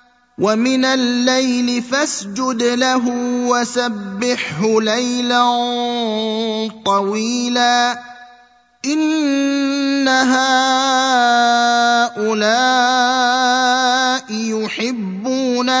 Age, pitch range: 30-49, 215-245 Hz